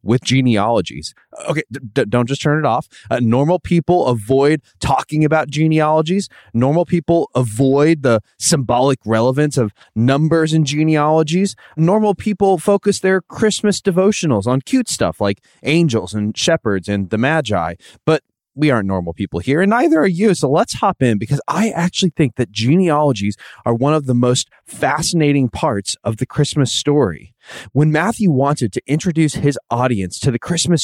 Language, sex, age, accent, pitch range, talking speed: English, male, 20-39, American, 115-165 Hz, 160 wpm